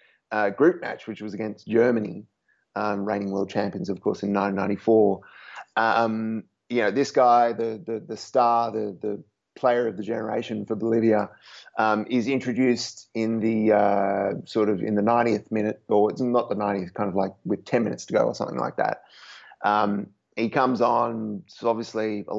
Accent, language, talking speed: Australian, English, 180 wpm